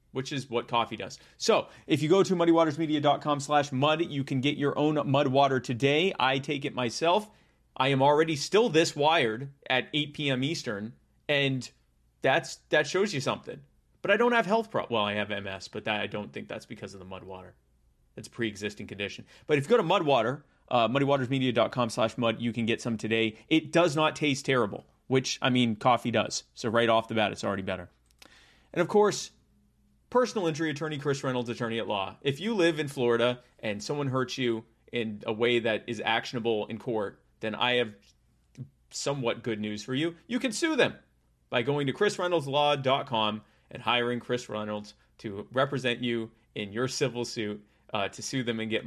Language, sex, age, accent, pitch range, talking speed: English, male, 30-49, American, 105-140 Hz, 200 wpm